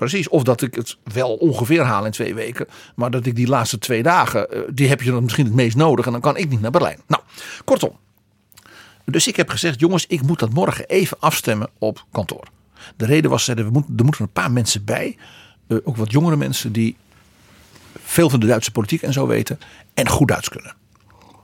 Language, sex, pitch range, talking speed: Dutch, male, 110-150 Hz, 215 wpm